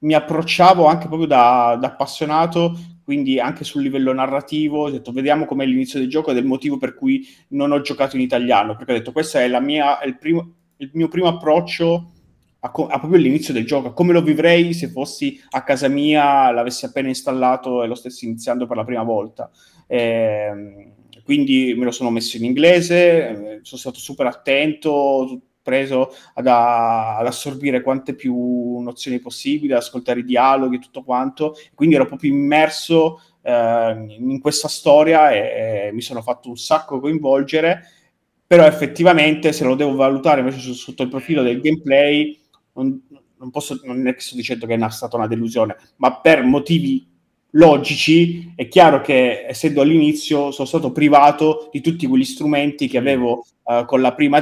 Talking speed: 170 wpm